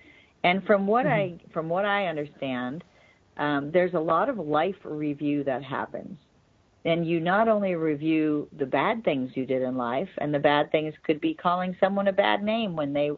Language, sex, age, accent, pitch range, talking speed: English, female, 50-69, American, 145-190 Hz, 190 wpm